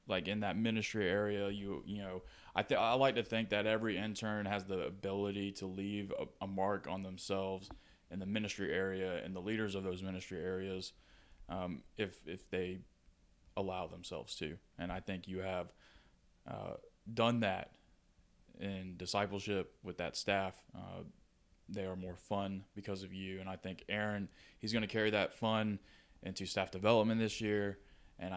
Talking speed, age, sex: 175 wpm, 20-39, male